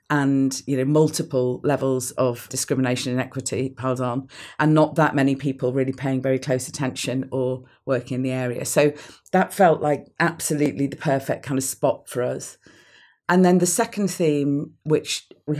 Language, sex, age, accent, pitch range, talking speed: English, female, 40-59, British, 125-140 Hz, 175 wpm